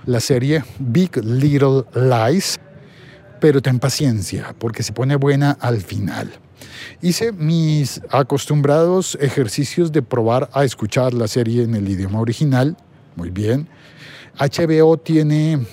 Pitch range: 115-145 Hz